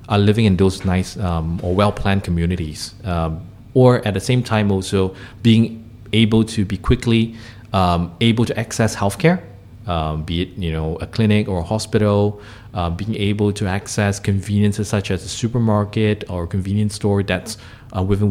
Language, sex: English, male